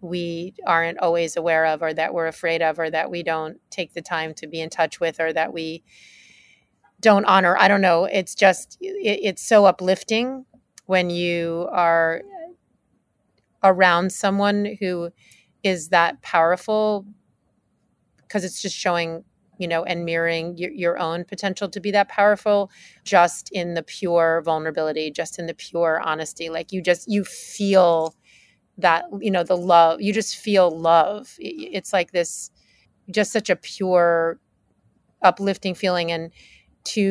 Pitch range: 170-195 Hz